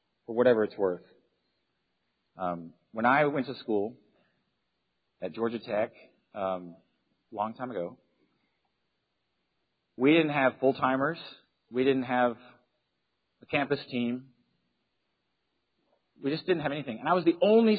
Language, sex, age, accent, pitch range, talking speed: English, male, 40-59, American, 130-195 Hz, 130 wpm